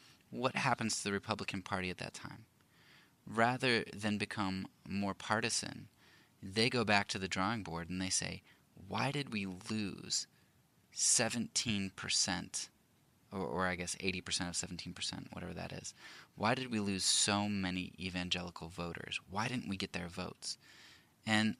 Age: 20-39